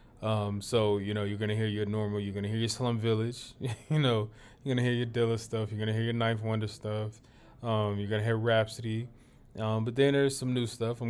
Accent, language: American, English